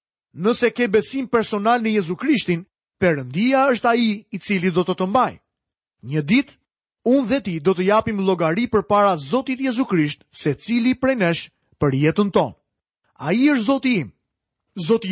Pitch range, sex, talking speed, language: 170-245 Hz, male, 155 wpm, Dutch